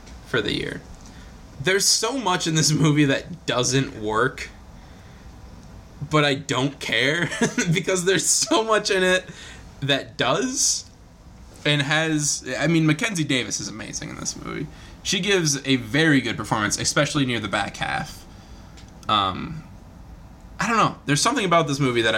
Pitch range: 125-170 Hz